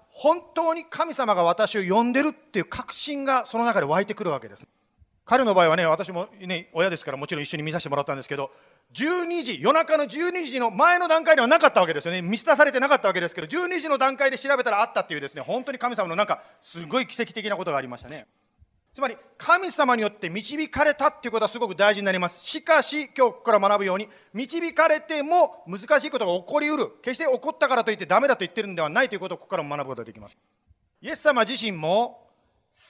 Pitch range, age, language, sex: 180-290 Hz, 40-59, Japanese, male